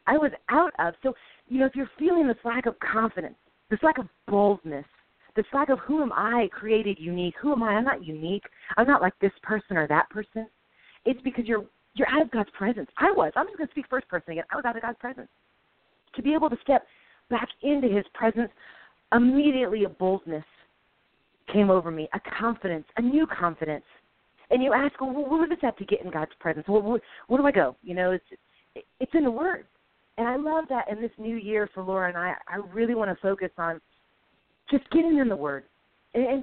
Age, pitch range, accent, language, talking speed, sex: 40-59, 180-245 Hz, American, English, 220 wpm, female